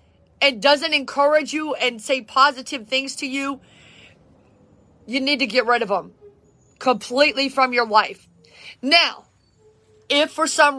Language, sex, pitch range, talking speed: English, female, 255-305 Hz, 140 wpm